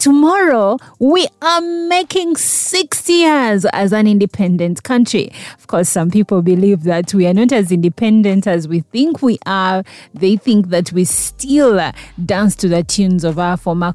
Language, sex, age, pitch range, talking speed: English, female, 30-49, 175-230 Hz, 165 wpm